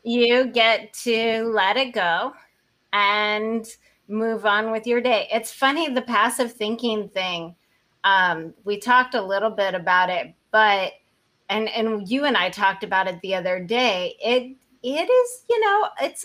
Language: English